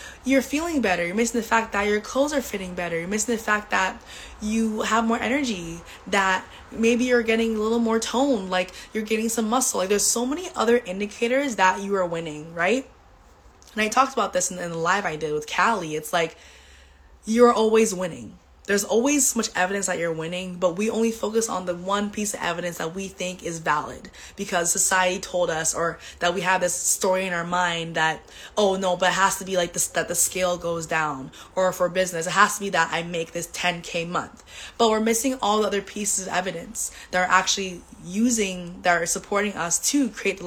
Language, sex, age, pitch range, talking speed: English, female, 20-39, 180-230 Hz, 220 wpm